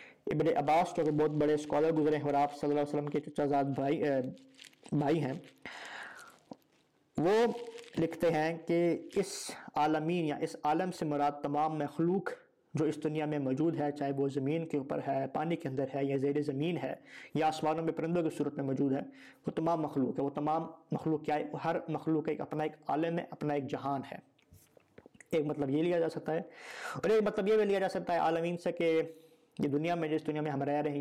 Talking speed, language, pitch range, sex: 215 wpm, Urdu, 145-165 Hz, male